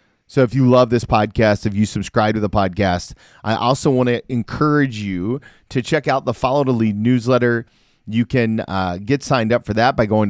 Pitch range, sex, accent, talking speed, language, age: 100-130 Hz, male, American, 210 wpm, English, 30-49